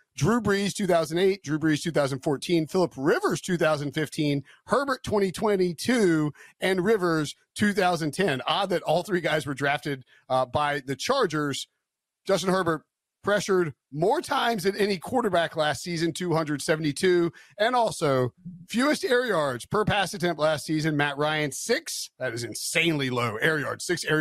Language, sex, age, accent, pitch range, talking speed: English, male, 40-59, American, 140-185 Hz, 170 wpm